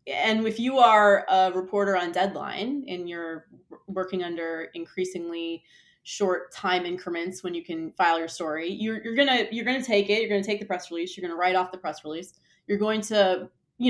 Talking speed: 215 wpm